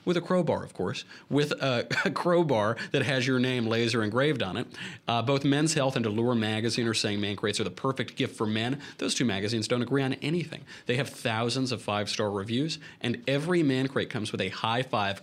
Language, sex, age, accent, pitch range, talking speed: English, male, 30-49, American, 110-135 Hz, 215 wpm